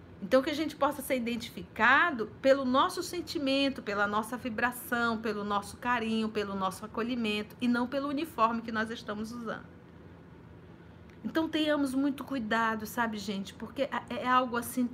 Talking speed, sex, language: 150 wpm, female, Portuguese